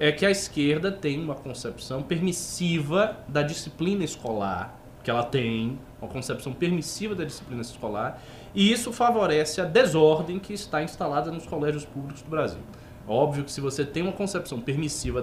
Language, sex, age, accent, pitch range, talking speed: Portuguese, male, 20-39, Brazilian, 130-200 Hz, 160 wpm